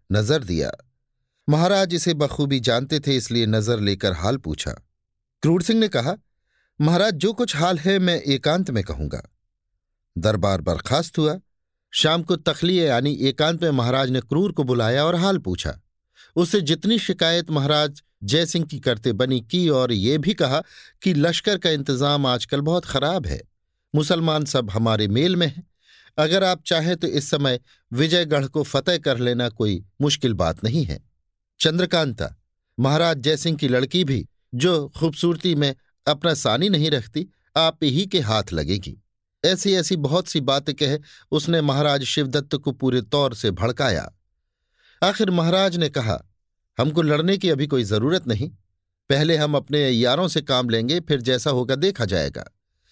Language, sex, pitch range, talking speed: Hindi, male, 115-165 Hz, 160 wpm